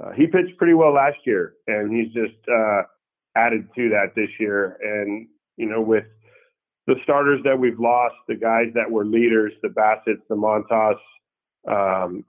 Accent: American